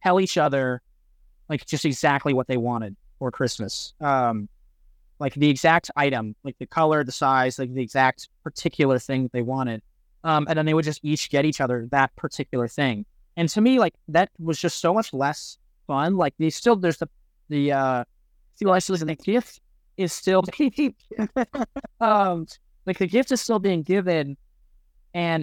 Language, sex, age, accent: English, male, 20-39, American